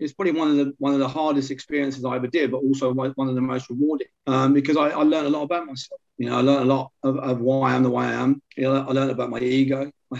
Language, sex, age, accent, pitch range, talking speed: English, male, 30-49, British, 130-145 Hz, 300 wpm